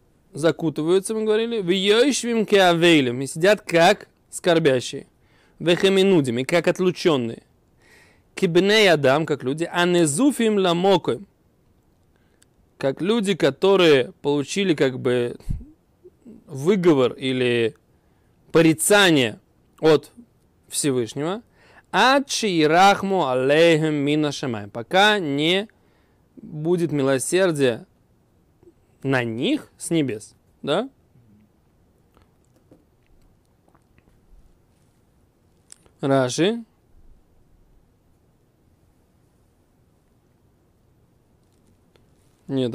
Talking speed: 65 wpm